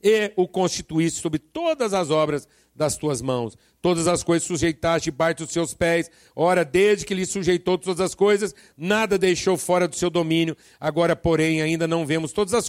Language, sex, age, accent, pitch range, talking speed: Portuguese, male, 60-79, Brazilian, 155-200 Hz, 190 wpm